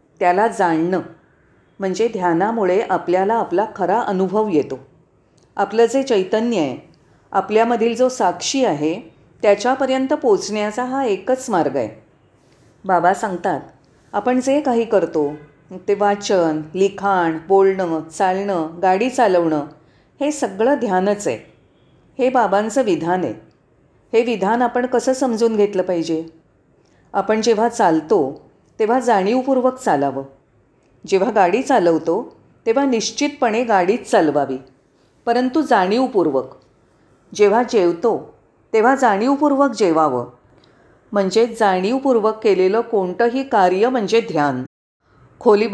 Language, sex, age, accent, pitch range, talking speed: Marathi, female, 40-59, native, 170-240 Hz, 105 wpm